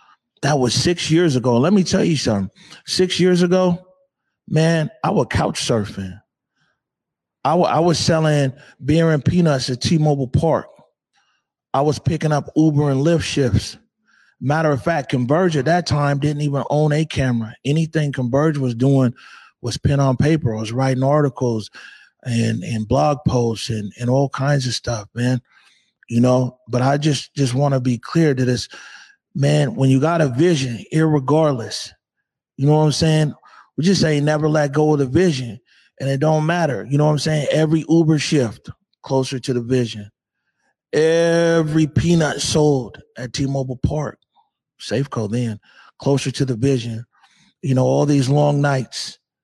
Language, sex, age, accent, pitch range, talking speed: English, male, 30-49, American, 130-155 Hz, 170 wpm